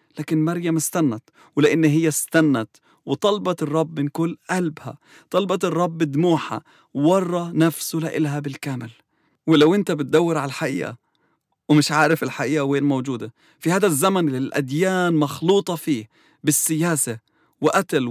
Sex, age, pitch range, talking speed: male, 30-49, 150-180 Hz, 125 wpm